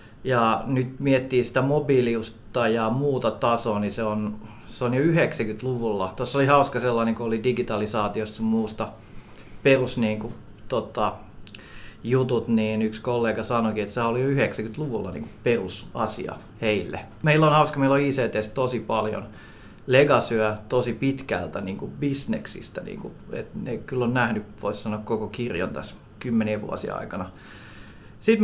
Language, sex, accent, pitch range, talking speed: Finnish, male, native, 110-130 Hz, 140 wpm